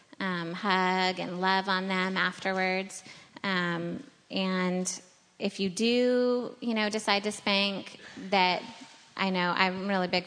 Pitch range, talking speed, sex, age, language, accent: 175-200 Hz, 140 wpm, female, 20-39, English, American